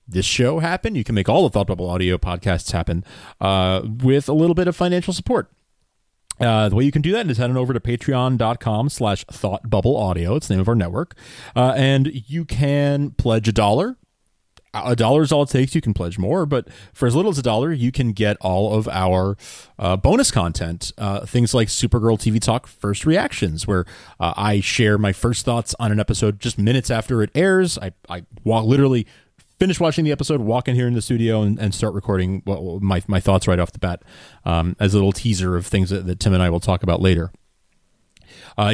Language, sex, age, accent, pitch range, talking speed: English, male, 30-49, American, 95-135 Hz, 220 wpm